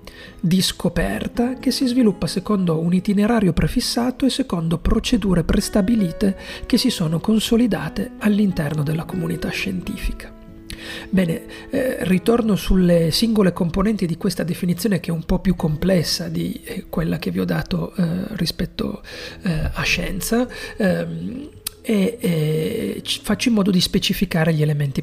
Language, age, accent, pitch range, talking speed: Italian, 40-59, native, 165-225 Hz, 135 wpm